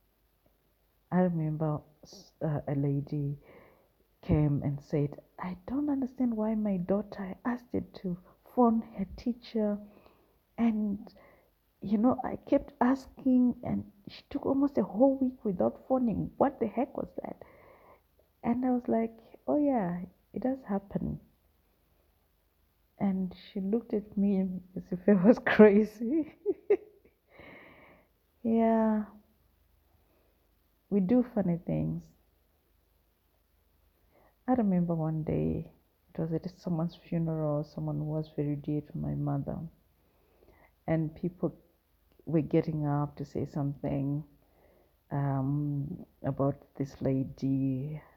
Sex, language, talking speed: female, English, 115 wpm